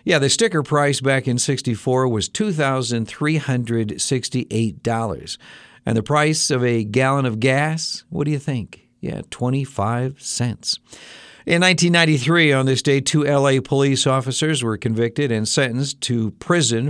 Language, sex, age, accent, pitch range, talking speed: English, male, 60-79, American, 110-140 Hz, 140 wpm